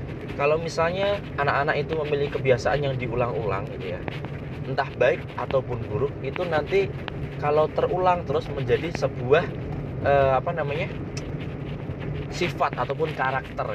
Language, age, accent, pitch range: Indonesian, 20-39, native, 125-145 Hz